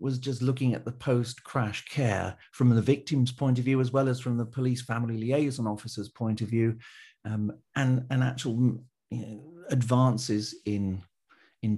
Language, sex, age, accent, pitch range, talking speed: English, male, 40-59, British, 125-150 Hz, 165 wpm